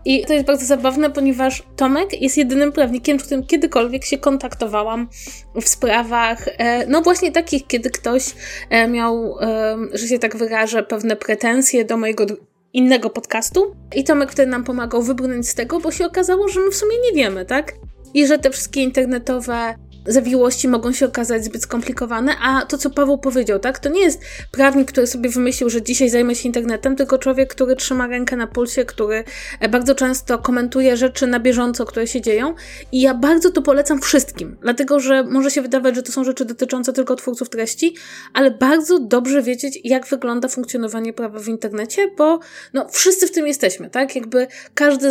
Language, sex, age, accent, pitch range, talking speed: Polish, female, 20-39, native, 240-280 Hz, 180 wpm